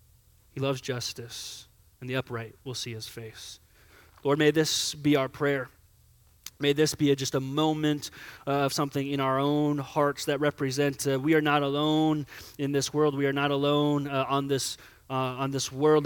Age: 20-39